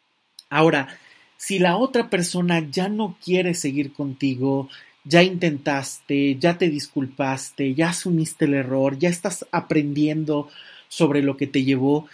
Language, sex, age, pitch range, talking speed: Spanish, male, 30-49, 135-165 Hz, 135 wpm